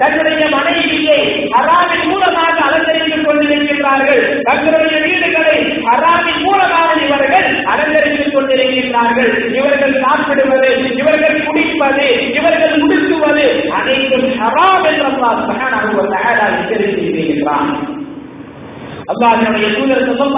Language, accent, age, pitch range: English, Indian, 20-39, 260-310 Hz